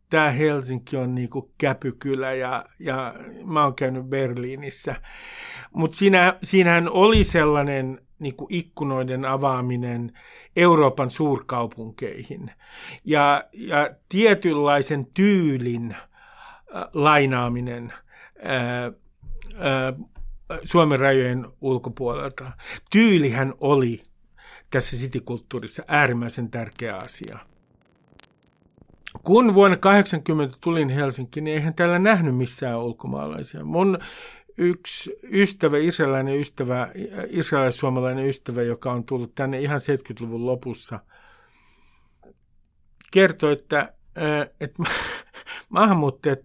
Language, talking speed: Finnish, 85 wpm